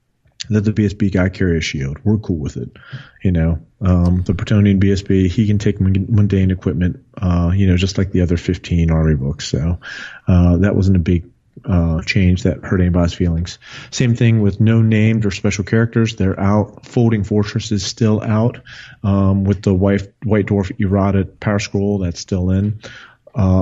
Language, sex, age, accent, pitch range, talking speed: English, male, 30-49, American, 90-110 Hz, 185 wpm